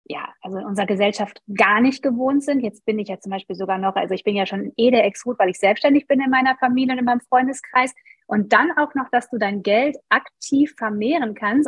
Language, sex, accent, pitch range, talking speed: German, female, German, 225-280 Hz, 240 wpm